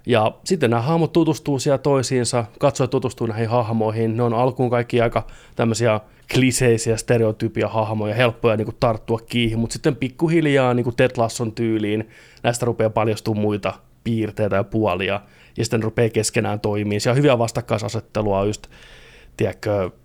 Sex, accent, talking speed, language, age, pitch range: male, native, 140 wpm, Finnish, 20-39, 110-125 Hz